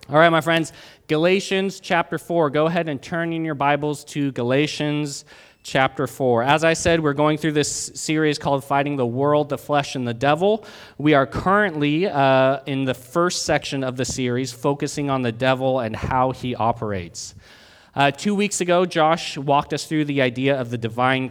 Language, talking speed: English, 190 wpm